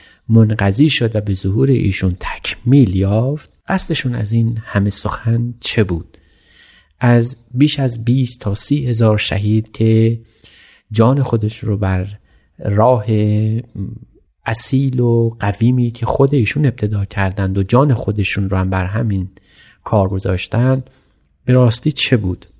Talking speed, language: 135 wpm, Persian